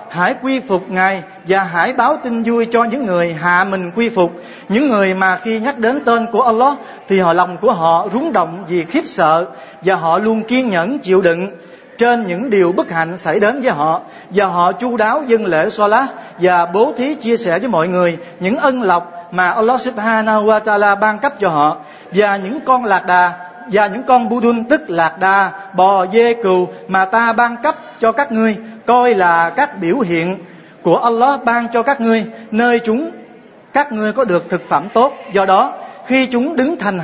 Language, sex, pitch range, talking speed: Vietnamese, male, 185-240 Hz, 205 wpm